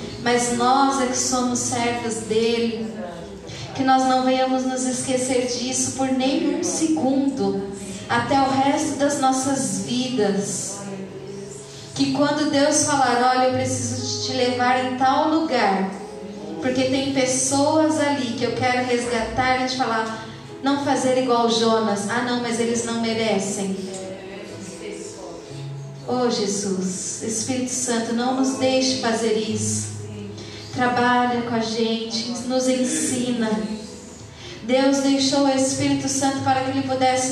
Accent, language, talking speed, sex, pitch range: Brazilian, Portuguese, 130 wpm, female, 220-265 Hz